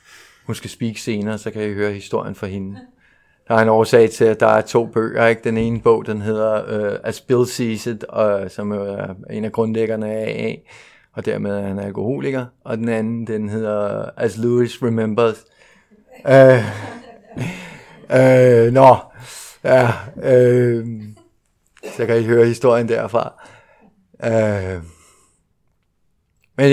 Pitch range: 110-130 Hz